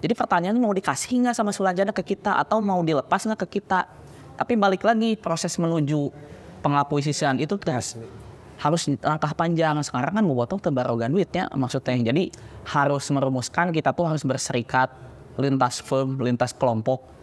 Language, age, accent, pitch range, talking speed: Indonesian, 20-39, native, 125-170 Hz, 155 wpm